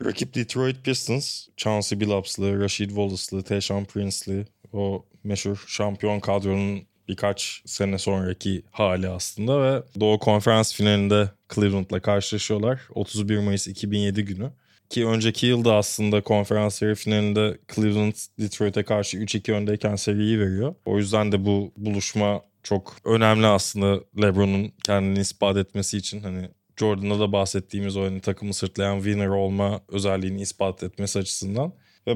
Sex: male